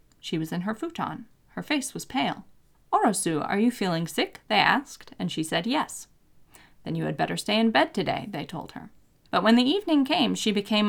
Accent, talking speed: American, 210 wpm